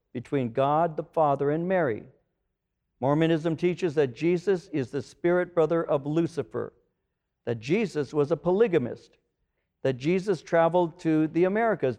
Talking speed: 135 wpm